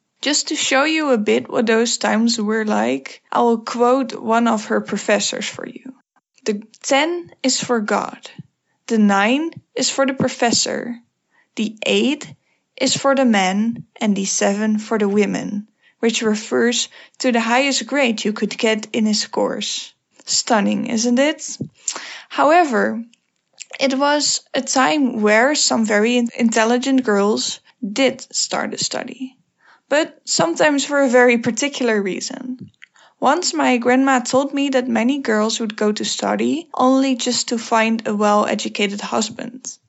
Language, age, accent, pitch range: English, 10-29, Dutch, 220-265 Hz